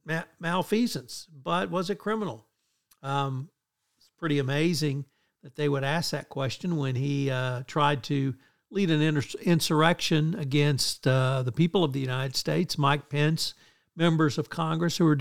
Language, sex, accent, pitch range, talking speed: English, male, American, 140-170 Hz, 150 wpm